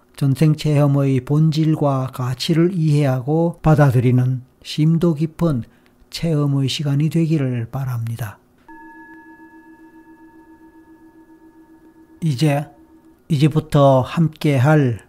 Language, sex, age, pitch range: Korean, male, 40-59, 125-155 Hz